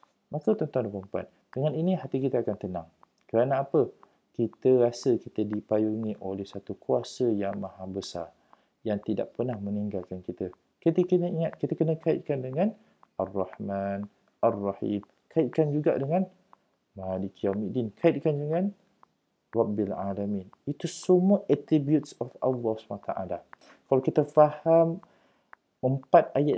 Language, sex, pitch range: Malay, male, 105-160 Hz